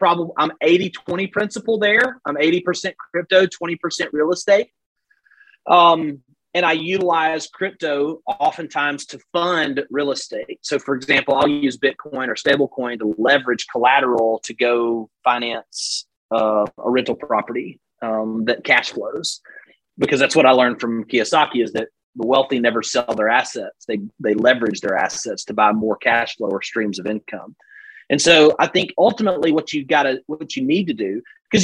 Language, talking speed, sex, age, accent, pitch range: English, 165 wpm, male, 30-49, American, 135-210 Hz